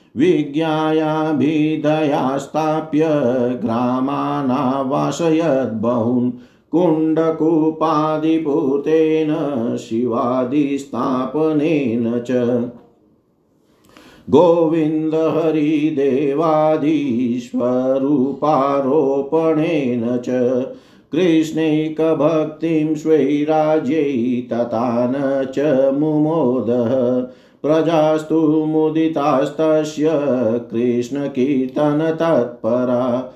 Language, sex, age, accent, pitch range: Hindi, male, 50-69, native, 125-155 Hz